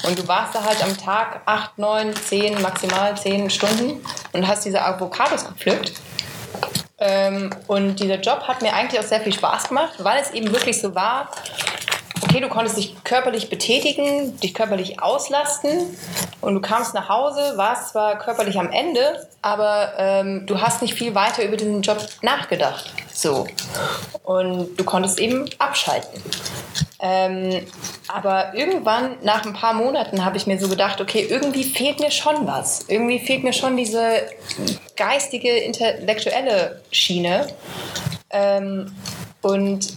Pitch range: 195-240 Hz